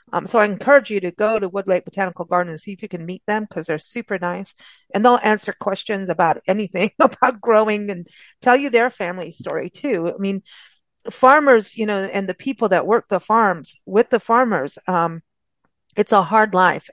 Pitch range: 180-225 Hz